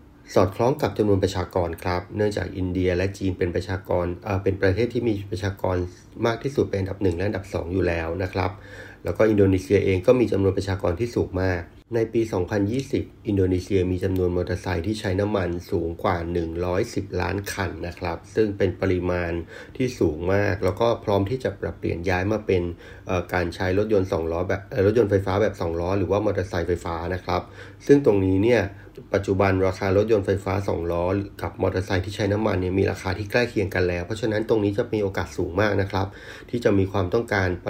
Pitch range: 90-100 Hz